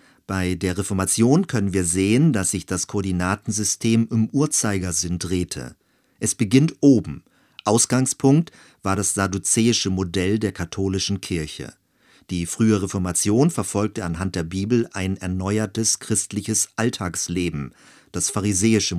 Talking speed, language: 115 wpm, German